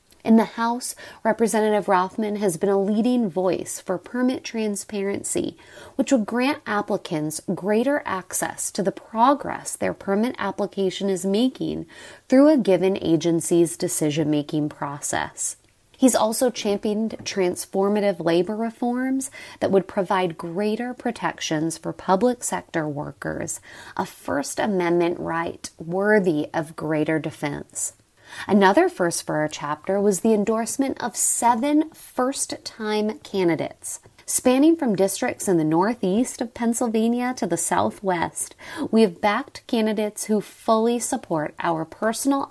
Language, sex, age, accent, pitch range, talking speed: English, female, 30-49, American, 175-240 Hz, 125 wpm